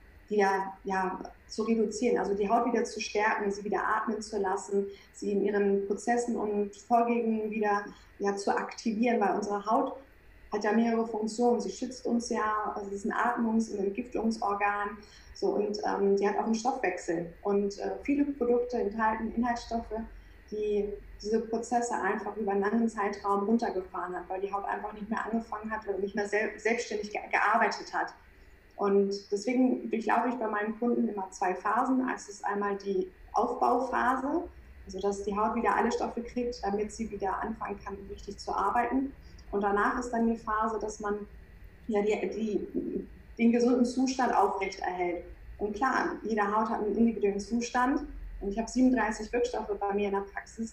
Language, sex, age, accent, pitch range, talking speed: German, female, 20-39, German, 200-230 Hz, 175 wpm